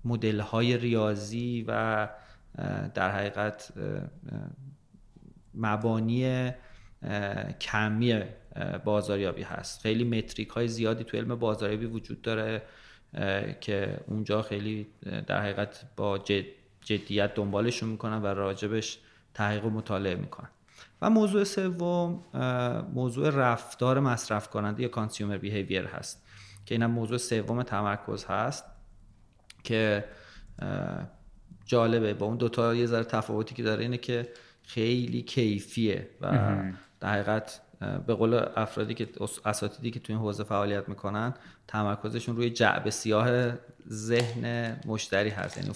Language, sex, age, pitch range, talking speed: Persian, male, 30-49, 105-120 Hz, 115 wpm